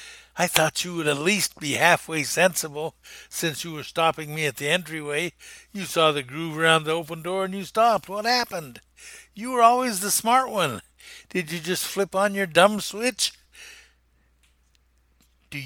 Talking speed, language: 175 wpm, English